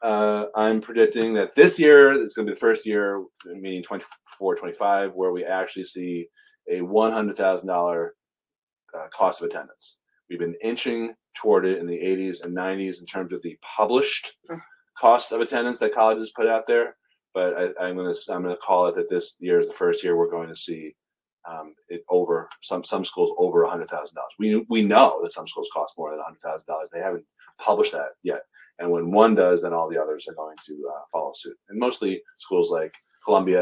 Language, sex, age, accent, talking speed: English, male, 30-49, American, 210 wpm